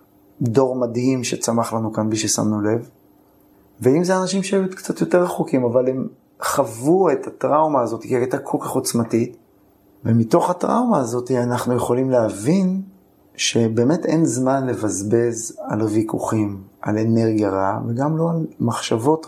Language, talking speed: Hebrew, 145 wpm